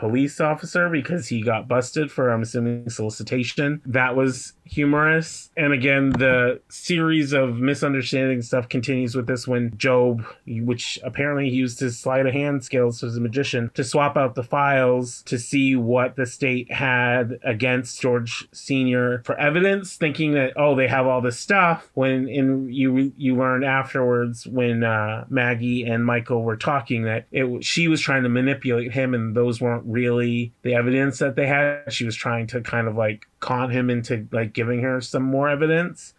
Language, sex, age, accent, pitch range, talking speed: English, male, 30-49, American, 120-135 Hz, 180 wpm